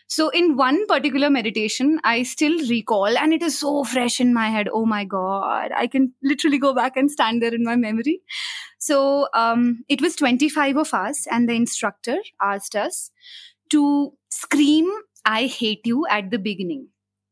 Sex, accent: female, Indian